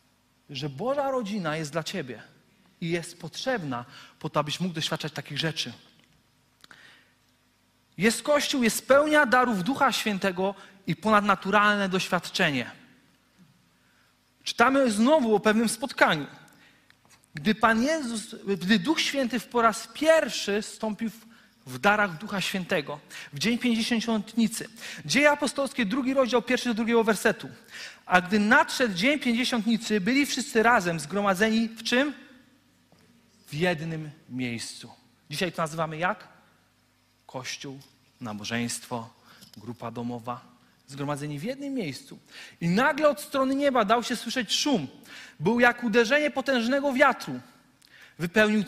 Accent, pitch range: native, 155-245 Hz